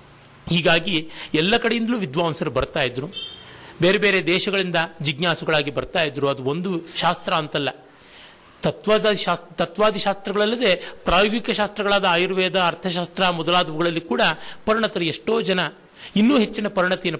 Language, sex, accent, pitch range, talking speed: Kannada, male, native, 150-200 Hz, 110 wpm